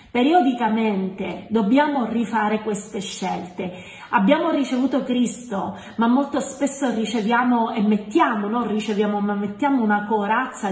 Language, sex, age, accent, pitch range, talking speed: Italian, female, 40-59, native, 200-260 Hz, 110 wpm